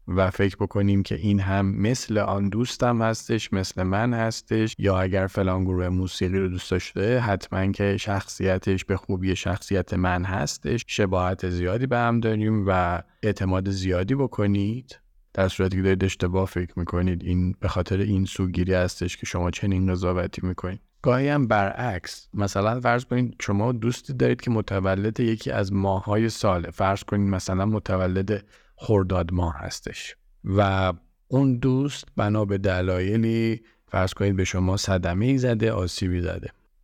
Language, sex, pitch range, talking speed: Persian, male, 95-110 Hz, 150 wpm